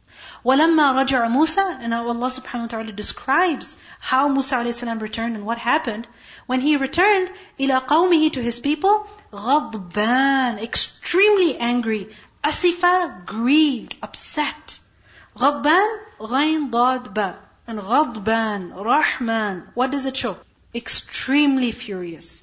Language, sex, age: English, female, 40-59